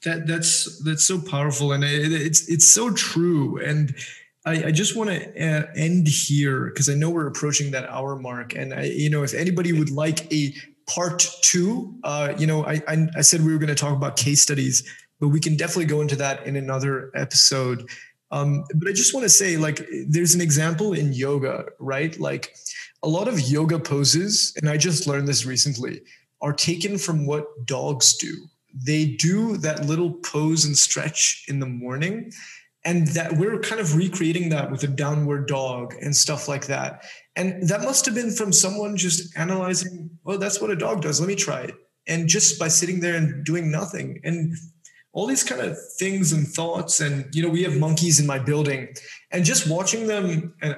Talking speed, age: 200 wpm, 20-39